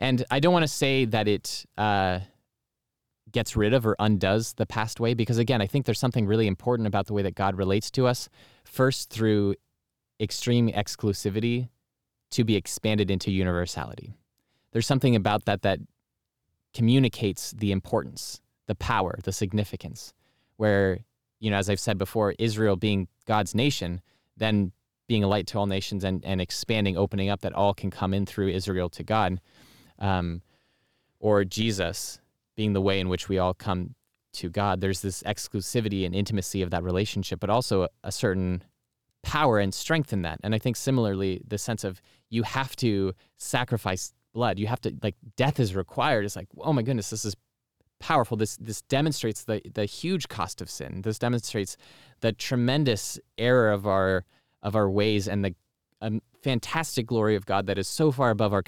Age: 20-39